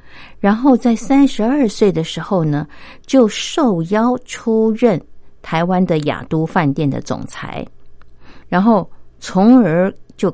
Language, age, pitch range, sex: Chinese, 50-69, 150-210 Hz, female